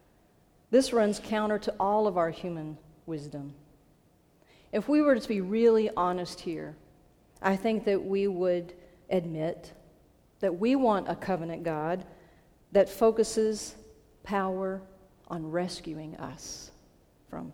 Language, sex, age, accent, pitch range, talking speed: English, female, 40-59, American, 165-195 Hz, 125 wpm